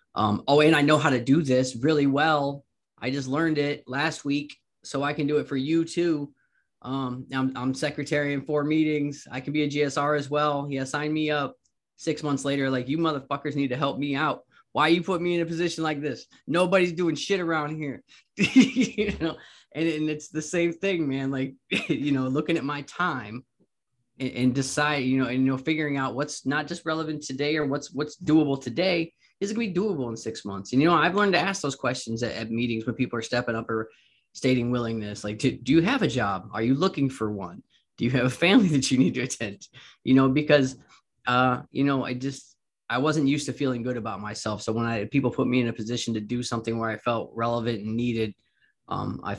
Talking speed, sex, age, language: 235 wpm, male, 20-39, English